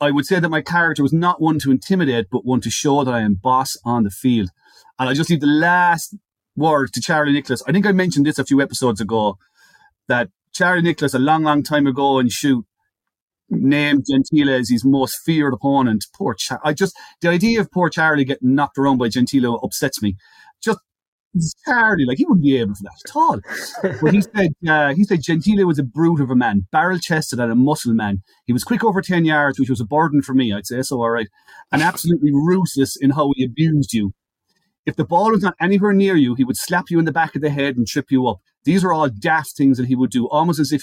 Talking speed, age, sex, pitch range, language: 240 wpm, 30-49, male, 130-170 Hz, English